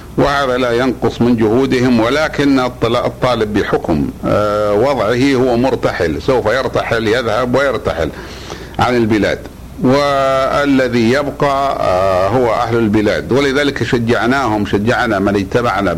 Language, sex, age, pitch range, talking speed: Arabic, male, 60-79, 110-135 Hz, 100 wpm